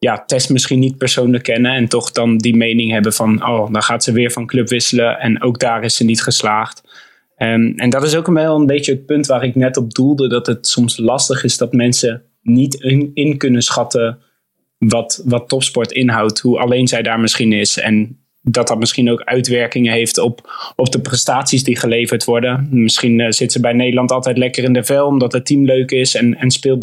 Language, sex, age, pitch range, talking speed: Dutch, male, 20-39, 115-130 Hz, 220 wpm